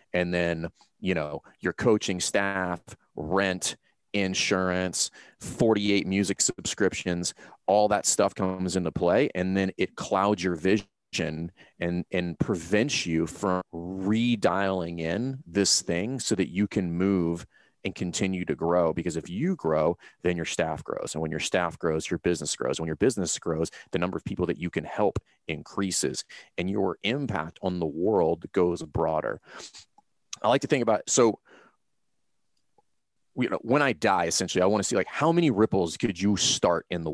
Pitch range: 85-100 Hz